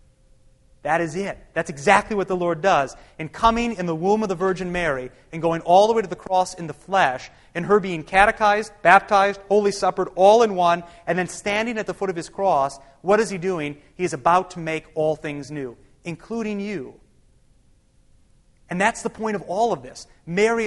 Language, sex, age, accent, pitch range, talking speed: English, male, 30-49, American, 165-215 Hz, 205 wpm